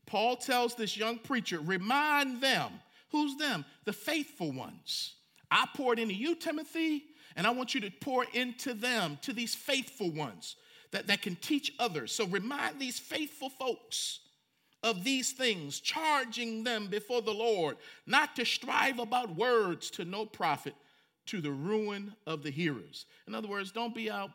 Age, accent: 50-69, American